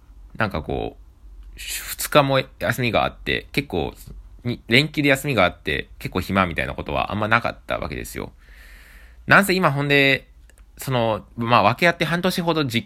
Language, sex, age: Japanese, male, 20-39